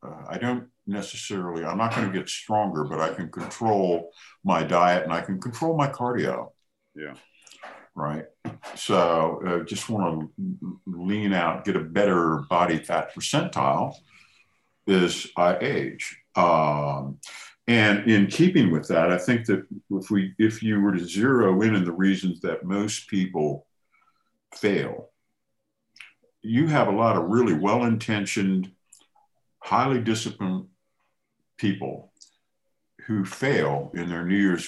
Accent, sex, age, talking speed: American, male, 50-69, 140 wpm